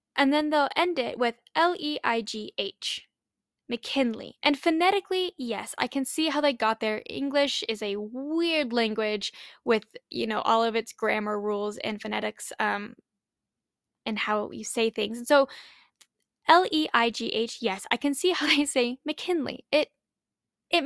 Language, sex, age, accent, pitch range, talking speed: English, female, 10-29, American, 225-295 Hz, 150 wpm